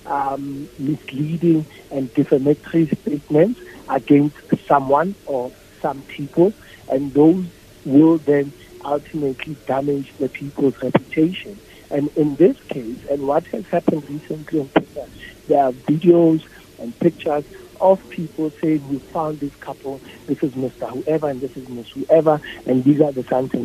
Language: English